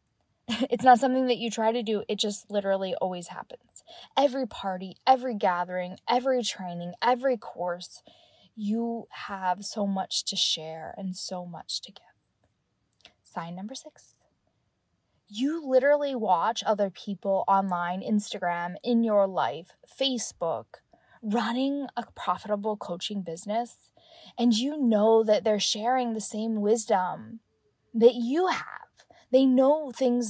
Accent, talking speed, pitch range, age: American, 130 wpm, 195-245 Hz, 10-29